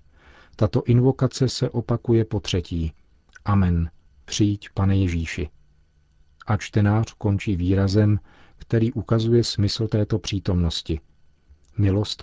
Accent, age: native, 40-59